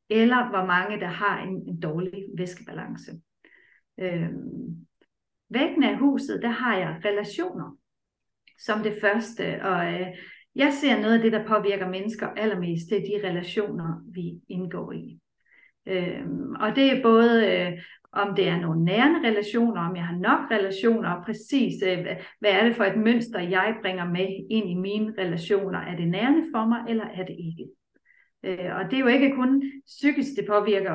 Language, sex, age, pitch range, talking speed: Danish, female, 40-59, 185-235 Hz, 175 wpm